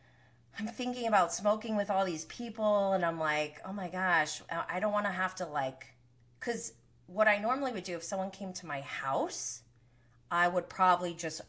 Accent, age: American, 20-39